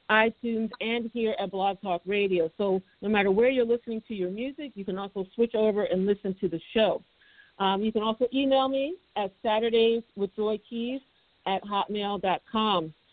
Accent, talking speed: American, 180 wpm